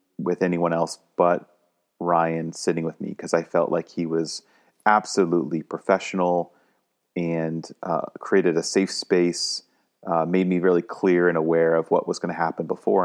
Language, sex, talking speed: English, male, 165 wpm